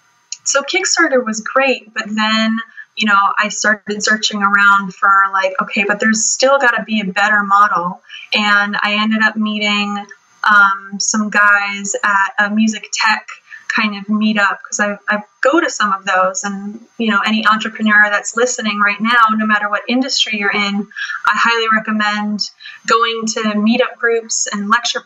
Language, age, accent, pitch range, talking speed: English, 10-29, American, 205-225 Hz, 170 wpm